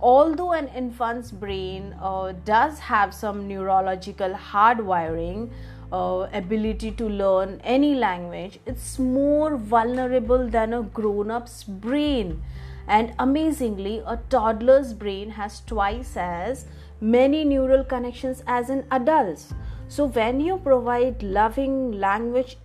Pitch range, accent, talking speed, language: 200-260 Hz, Indian, 110 wpm, English